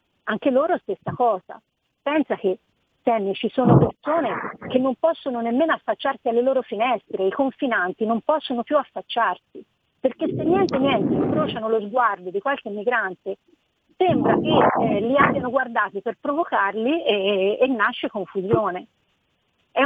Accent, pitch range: native, 205-270 Hz